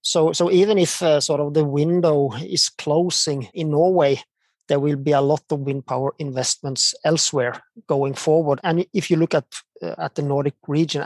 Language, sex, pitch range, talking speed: English, male, 135-165 Hz, 190 wpm